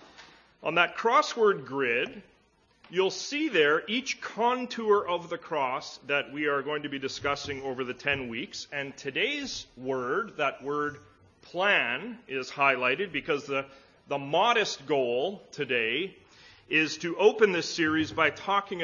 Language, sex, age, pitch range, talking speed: English, male, 40-59, 140-200 Hz, 140 wpm